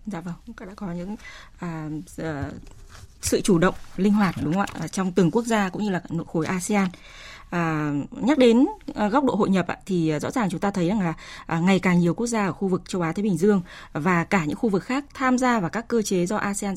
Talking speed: 245 wpm